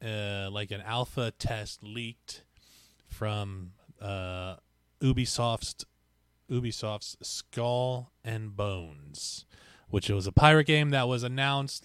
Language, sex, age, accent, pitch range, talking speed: English, male, 20-39, American, 90-120 Hz, 105 wpm